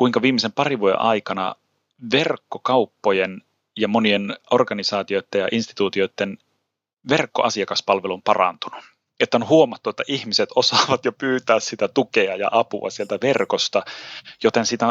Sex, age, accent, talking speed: male, 30-49, native, 115 wpm